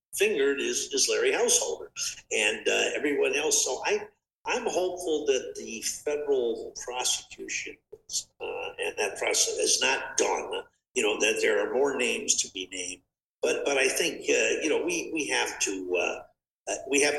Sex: male